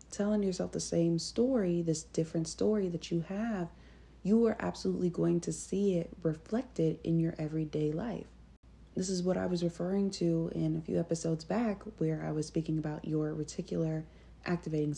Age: 40-59